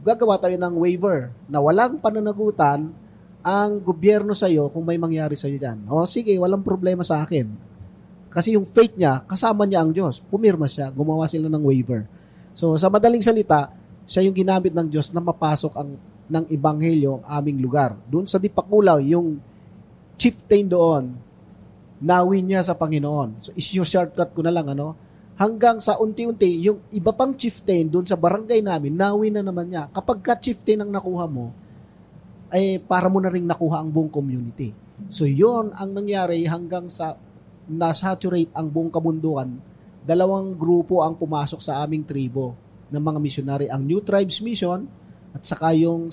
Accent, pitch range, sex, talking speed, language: native, 150-190 Hz, male, 165 wpm, Filipino